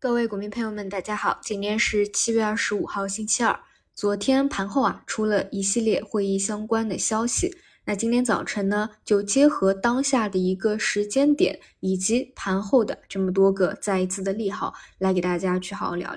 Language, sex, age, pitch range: Chinese, female, 20-39, 190-245 Hz